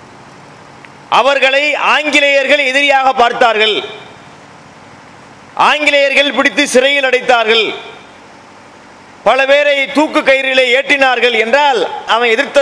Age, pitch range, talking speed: 30-49, 265-295 Hz, 55 wpm